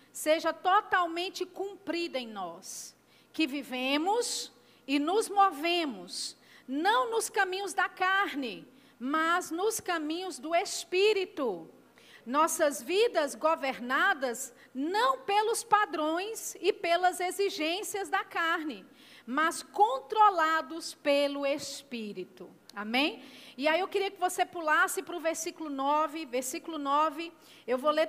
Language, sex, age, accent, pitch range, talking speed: Portuguese, female, 40-59, Brazilian, 285-370 Hz, 110 wpm